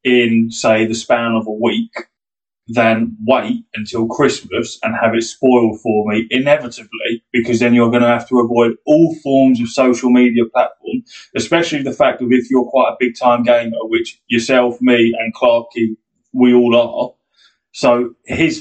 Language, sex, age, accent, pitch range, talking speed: English, male, 20-39, British, 115-135 Hz, 170 wpm